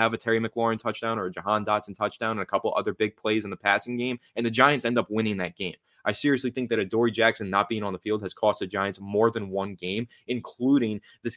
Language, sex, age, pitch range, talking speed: English, male, 20-39, 105-120 Hz, 255 wpm